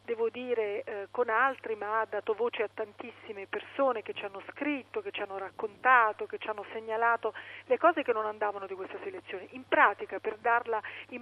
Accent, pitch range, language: native, 220-350 Hz, Italian